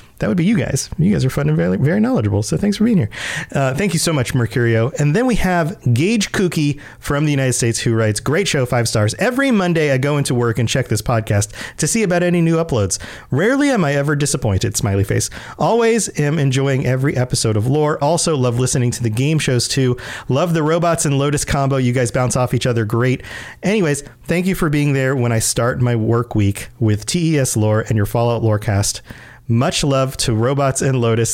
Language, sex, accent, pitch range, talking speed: English, male, American, 115-160 Hz, 225 wpm